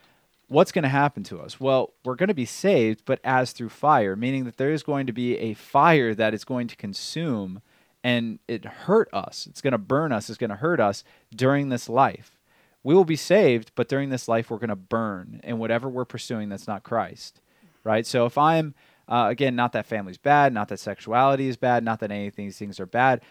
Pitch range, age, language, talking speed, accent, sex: 110-140 Hz, 30-49, English, 225 wpm, American, male